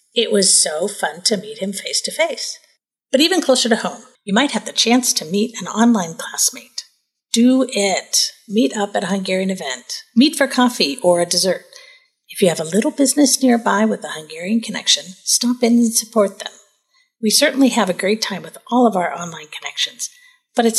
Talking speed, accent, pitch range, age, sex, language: 195 wpm, American, 195-285 Hz, 50-69, female, English